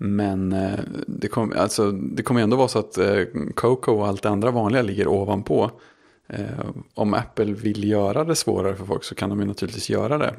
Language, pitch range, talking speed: Swedish, 100-115 Hz, 215 wpm